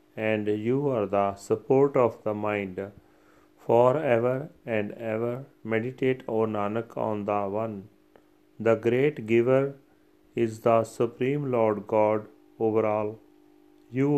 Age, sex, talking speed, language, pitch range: 40-59, male, 120 wpm, Punjabi, 105-130 Hz